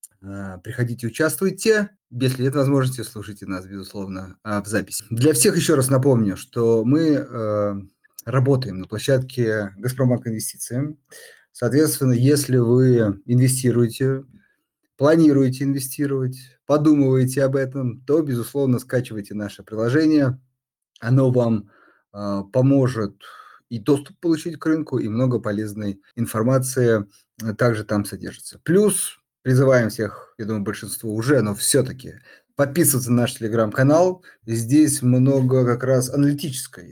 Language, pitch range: Russian, 110-145 Hz